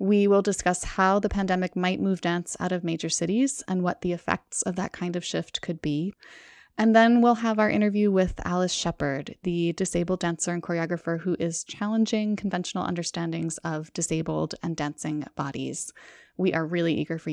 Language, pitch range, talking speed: English, 170-220 Hz, 185 wpm